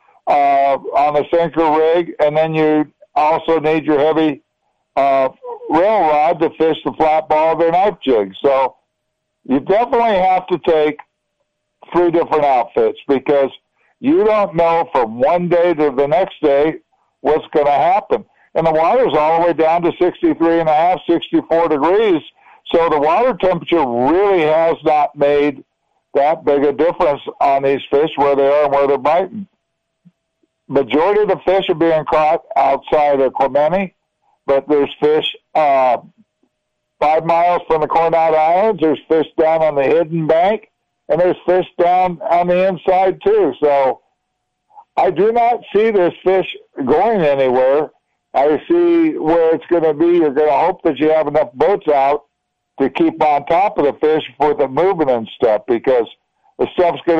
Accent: American